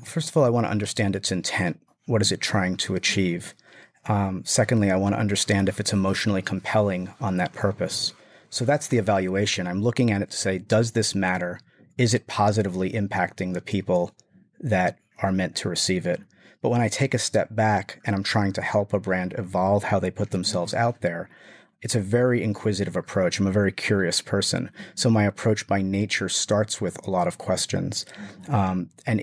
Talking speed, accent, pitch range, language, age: 200 wpm, American, 95-115 Hz, English, 40-59